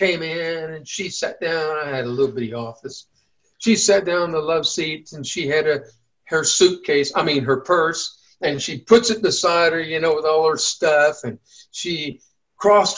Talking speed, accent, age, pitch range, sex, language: 200 wpm, American, 60-79, 150-215 Hz, male, English